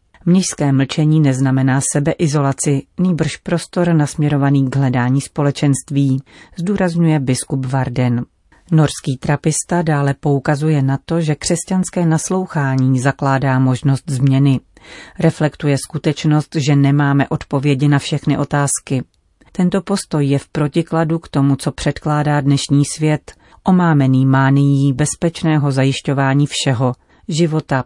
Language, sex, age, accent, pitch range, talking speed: Czech, female, 40-59, native, 135-165 Hz, 110 wpm